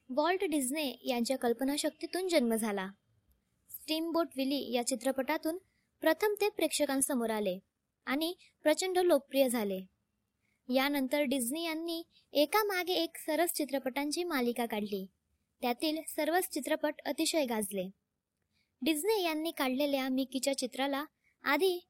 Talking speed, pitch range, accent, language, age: 100 wpm, 250-320 Hz, native, Marathi, 20-39